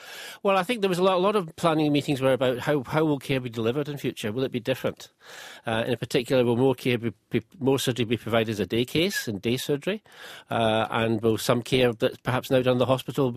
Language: English